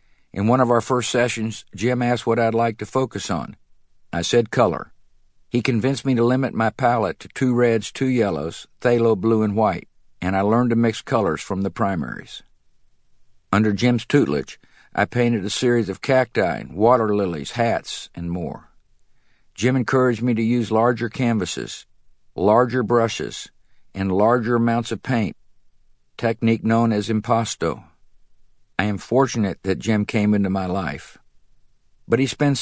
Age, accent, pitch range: 50-69, American, 105-120 Hz